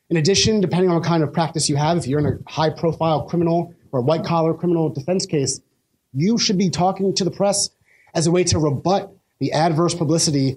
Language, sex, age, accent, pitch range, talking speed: English, male, 30-49, American, 140-185 Hz, 210 wpm